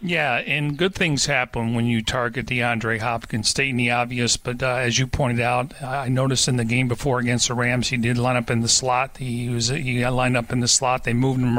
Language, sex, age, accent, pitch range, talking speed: English, male, 40-59, American, 125-140 Hz, 245 wpm